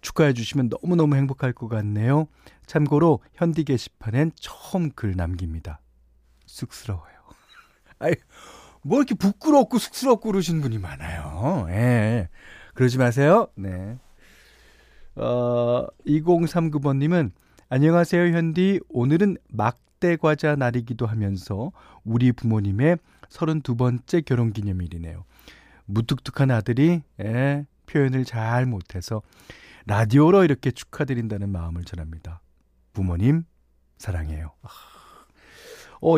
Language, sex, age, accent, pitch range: Korean, male, 40-59, native, 100-160 Hz